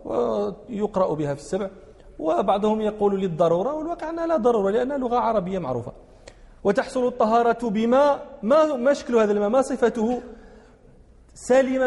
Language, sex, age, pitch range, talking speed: English, male, 40-59, 205-260 Hz, 120 wpm